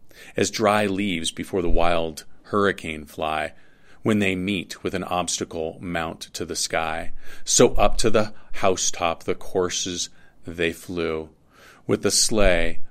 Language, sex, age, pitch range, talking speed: English, male, 40-59, 85-105 Hz, 140 wpm